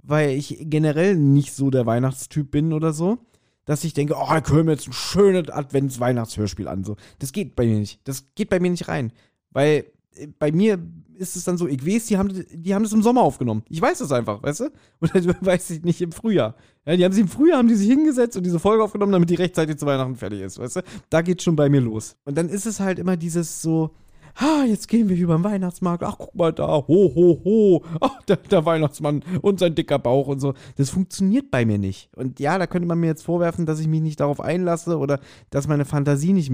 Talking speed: 245 wpm